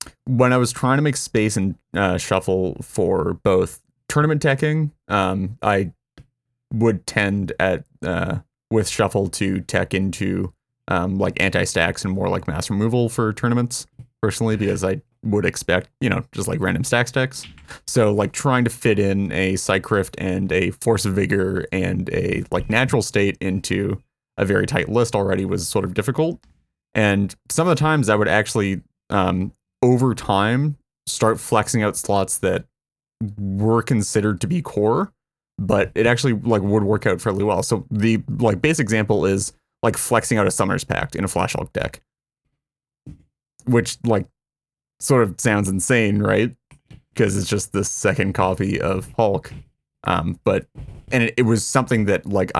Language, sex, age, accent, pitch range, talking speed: English, male, 20-39, American, 95-120 Hz, 170 wpm